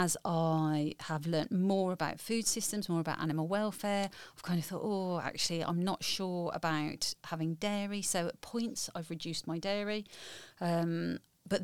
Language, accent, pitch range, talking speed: English, British, 165-205 Hz, 170 wpm